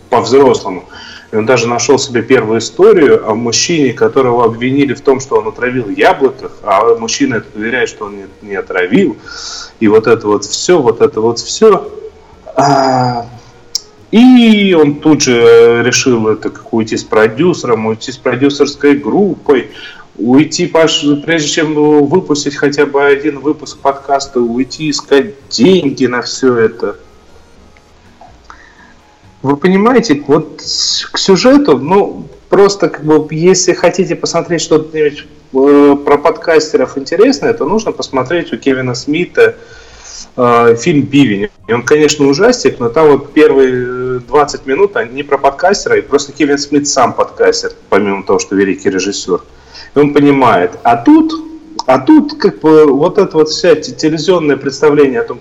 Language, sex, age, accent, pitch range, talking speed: Russian, male, 30-49, native, 130-215 Hz, 145 wpm